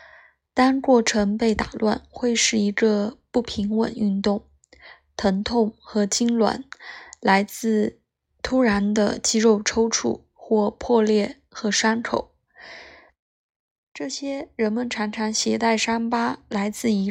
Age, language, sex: 20-39, Chinese, female